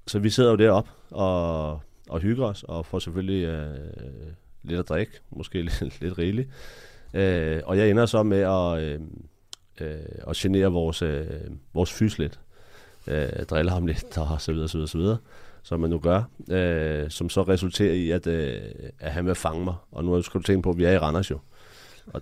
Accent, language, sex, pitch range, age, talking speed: native, Danish, male, 85-100 Hz, 30-49, 205 wpm